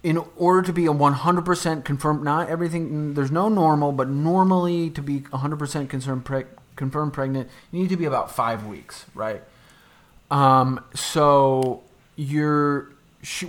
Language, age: English, 30-49